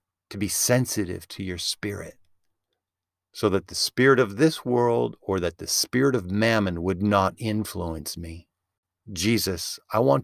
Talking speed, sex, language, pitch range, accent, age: 150 wpm, male, English, 90-110 Hz, American, 50-69